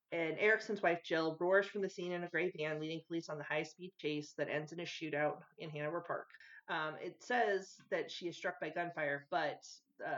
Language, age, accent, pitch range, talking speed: English, 30-49, American, 155-190 Hz, 220 wpm